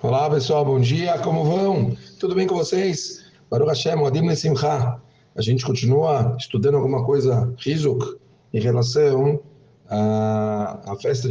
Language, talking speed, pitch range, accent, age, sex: Portuguese, 135 wpm, 110-140 Hz, Brazilian, 40-59, male